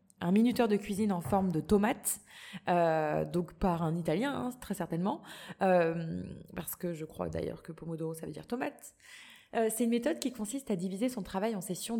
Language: French